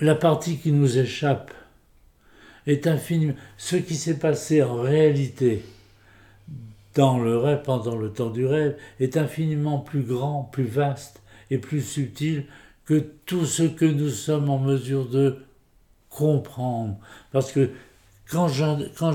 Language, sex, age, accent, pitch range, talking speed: French, male, 60-79, French, 110-145 Hz, 135 wpm